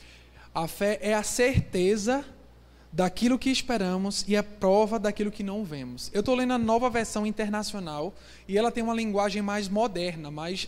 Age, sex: 20-39, male